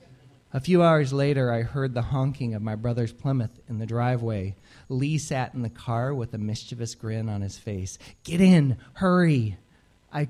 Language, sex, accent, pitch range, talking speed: English, male, American, 115-145 Hz, 180 wpm